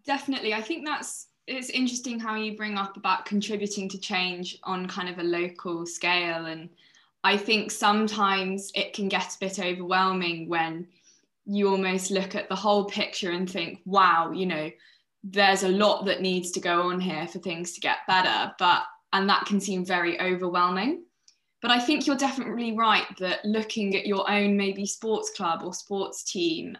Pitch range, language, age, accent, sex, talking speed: 185-225 Hz, English, 20-39, British, female, 180 wpm